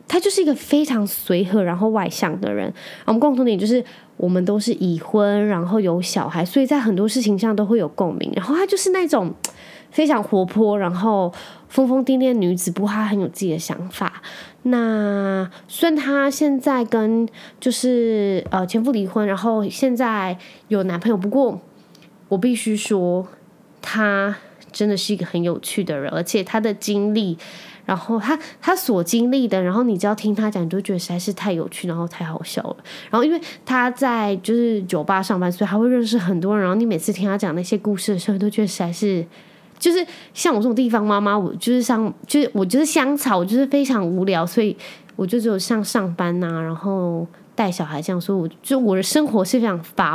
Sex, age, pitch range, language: female, 20-39, 190-245 Hz, Chinese